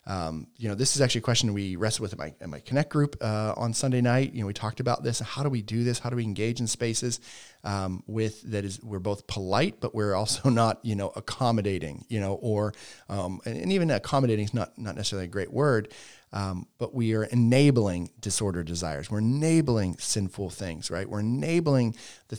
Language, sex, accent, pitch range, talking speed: English, male, American, 100-130 Hz, 215 wpm